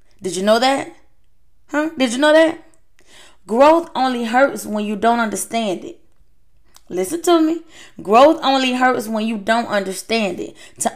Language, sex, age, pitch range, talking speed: English, female, 20-39, 190-280 Hz, 160 wpm